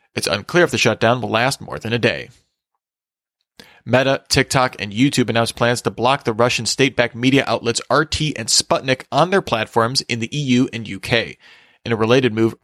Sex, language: male, English